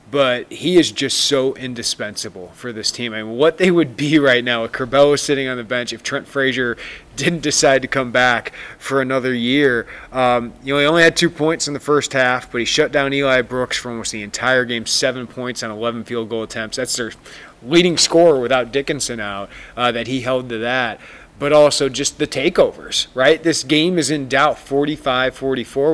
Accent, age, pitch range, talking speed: American, 30-49, 120-145 Hz, 205 wpm